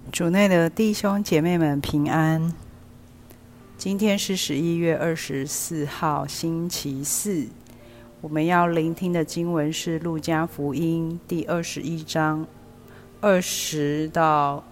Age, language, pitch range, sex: 40-59, Chinese, 140-170 Hz, female